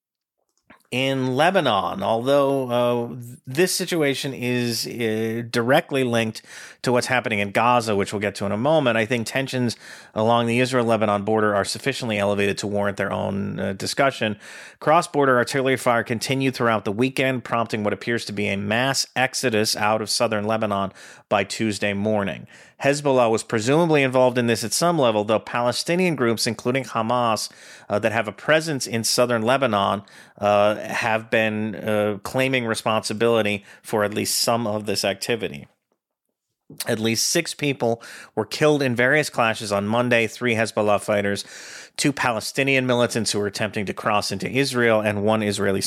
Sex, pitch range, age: male, 105-130 Hz, 40-59